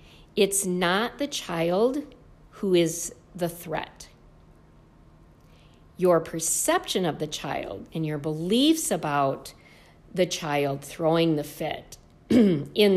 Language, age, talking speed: English, 50-69, 105 wpm